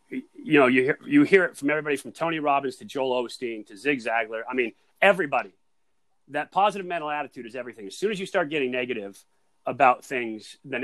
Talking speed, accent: 205 wpm, American